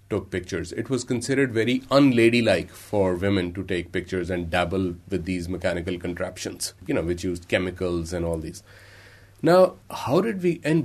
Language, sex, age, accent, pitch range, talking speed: English, male, 30-49, Indian, 95-120 Hz, 170 wpm